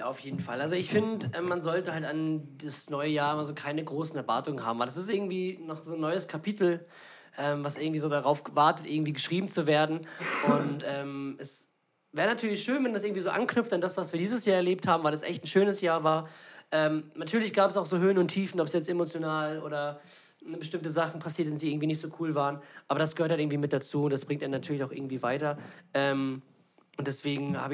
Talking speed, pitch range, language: 235 wpm, 140-165 Hz, German